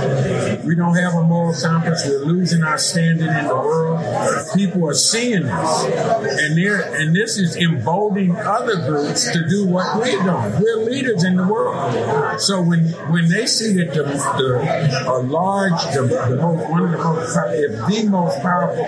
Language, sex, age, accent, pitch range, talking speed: English, male, 50-69, American, 160-190 Hz, 170 wpm